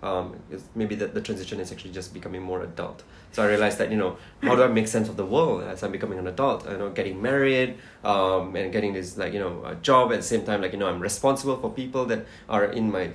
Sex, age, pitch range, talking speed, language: male, 20-39, 95-115 Hz, 270 wpm, English